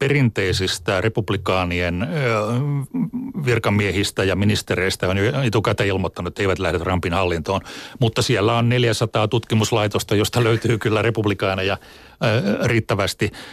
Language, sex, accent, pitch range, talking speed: Finnish, male, native, 100-120 Hz, 100 wpm